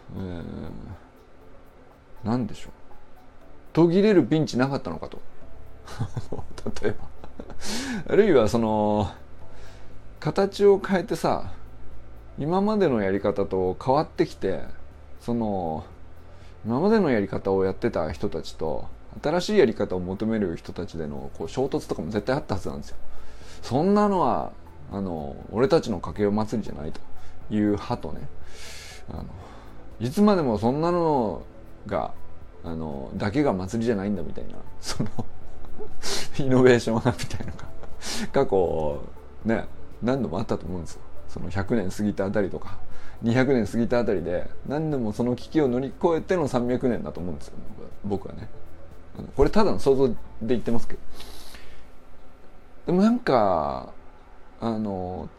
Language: Japanese